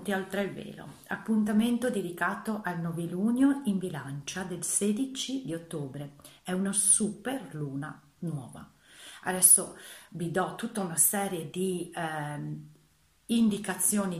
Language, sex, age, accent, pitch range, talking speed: Italian, female, 40-59, native, 165-205 Hz, 115 wpm